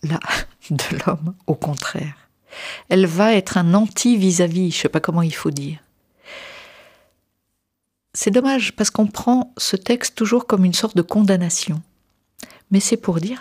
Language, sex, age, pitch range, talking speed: French, female, 50-69, 160-220 Hz, 155 wpm